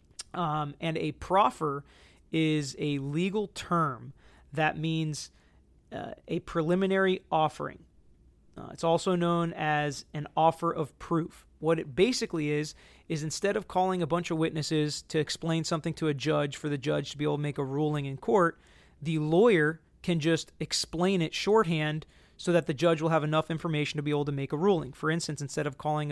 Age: 30-49